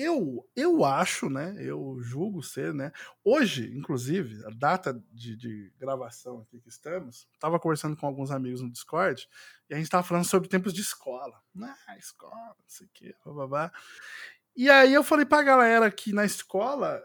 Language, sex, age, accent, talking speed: Portuguese, male, 20-39, Brazilian, 180 wpm